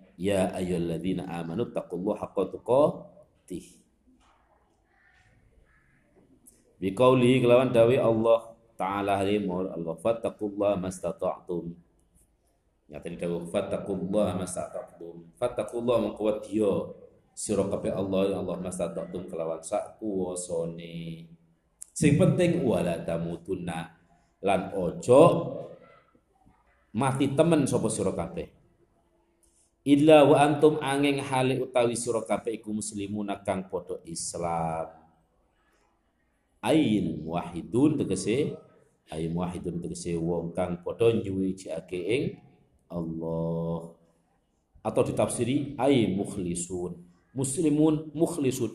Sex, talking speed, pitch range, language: male, 90 wpm, 85-115 Hz, Indonesian